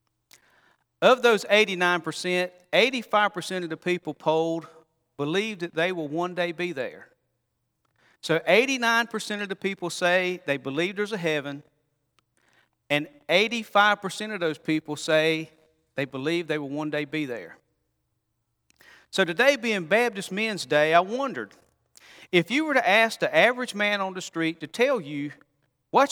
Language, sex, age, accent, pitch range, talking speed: English, male, 40-59, American, 150-205 Hz, 145 wpm